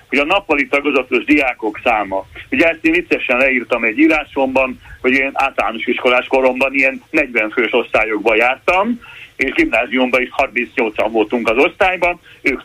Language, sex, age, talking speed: Hungarian, male, 60-79, 145 wpm